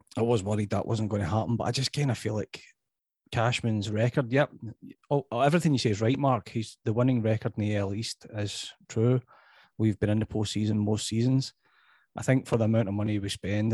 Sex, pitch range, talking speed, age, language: male, 110-125 Hz, 225 wpm, 30-49, English